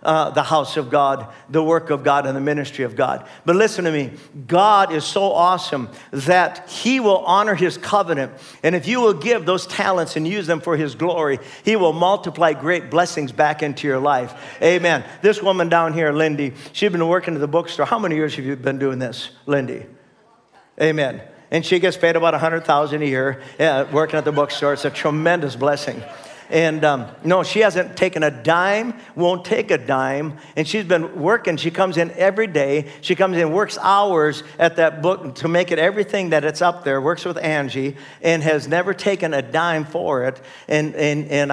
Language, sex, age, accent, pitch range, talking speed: English, male, 50-69, American, 145-175 Hz, 200 wpm